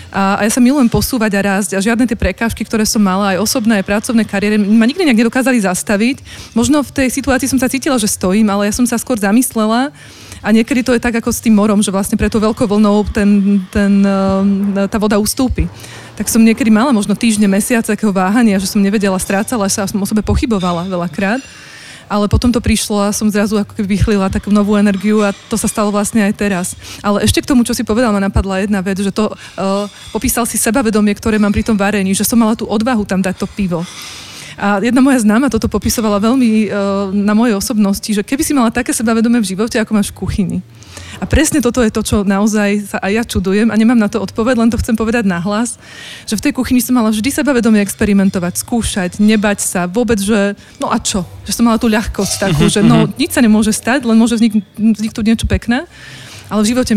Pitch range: 200-235 Hz